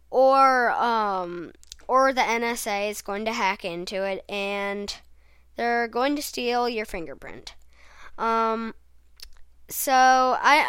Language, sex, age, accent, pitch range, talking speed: English, female, 10-29, American, 200-245 Hz, 120 wpm